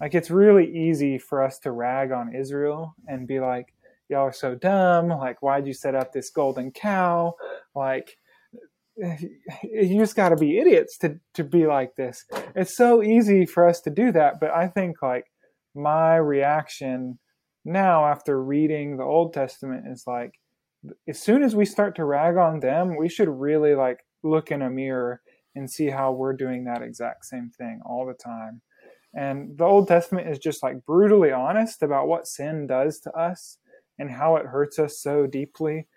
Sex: male